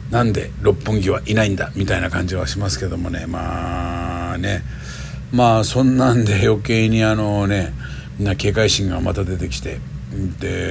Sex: male